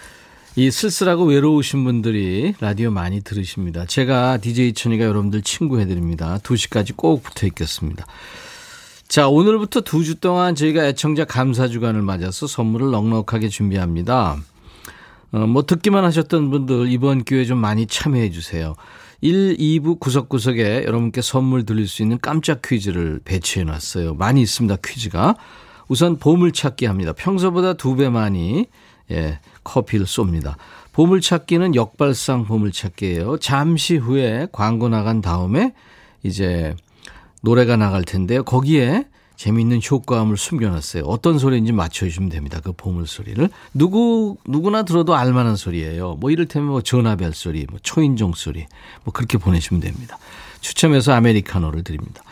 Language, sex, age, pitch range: Korean, male, 40-59, 95-150 Hz